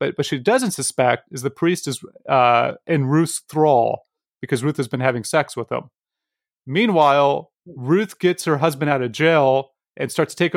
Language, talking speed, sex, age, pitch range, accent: English, 185 wpm, male, 30-49, 135-165 Hz, American